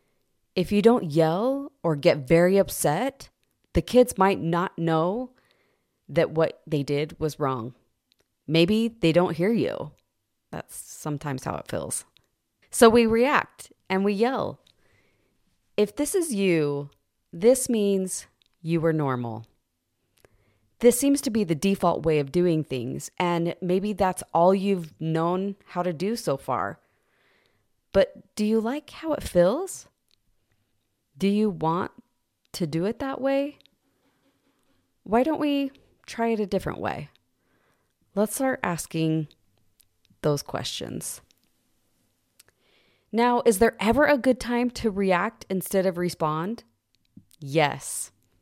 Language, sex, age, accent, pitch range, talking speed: English, female, 30-49, American, 155-220 Hz, 130 wpm